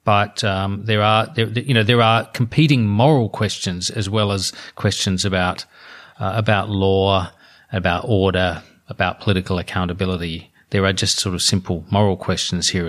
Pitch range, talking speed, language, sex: 100-115 Hz, 155 wpm, English, male